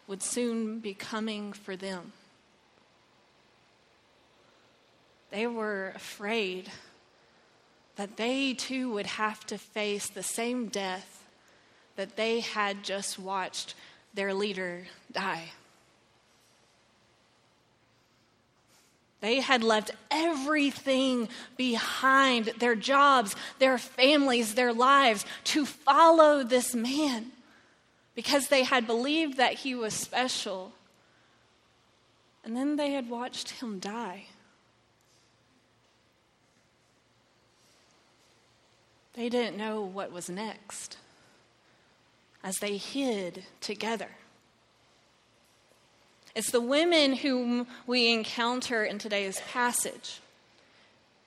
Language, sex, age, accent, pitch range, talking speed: English, female, 20-39, American, 205-260 Hz, 90 wpm